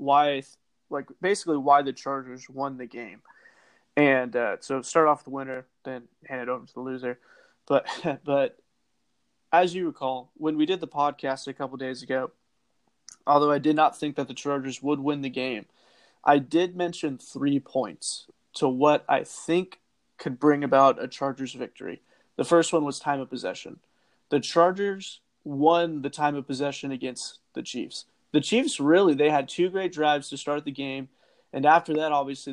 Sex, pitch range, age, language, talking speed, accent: male, 135-155 Hz, 30-49, English, 180 wpm, American